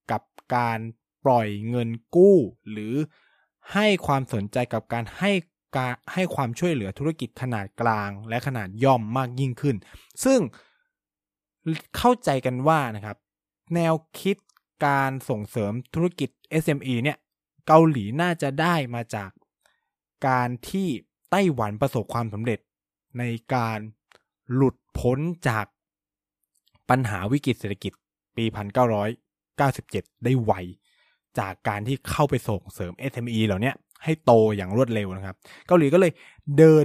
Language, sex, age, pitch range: Thai, male, 20-39, 105-145 Hz